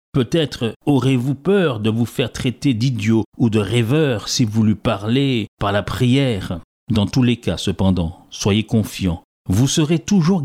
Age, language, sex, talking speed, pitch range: 50-69, French, male, 160 wpm, 105-135 Hz